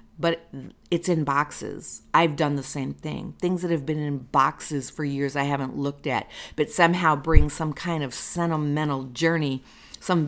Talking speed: 175 wpm